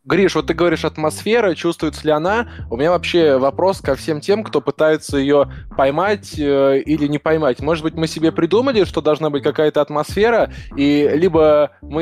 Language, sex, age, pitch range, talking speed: Russian, male, 20-39, 135-155 Hz, 180 wpm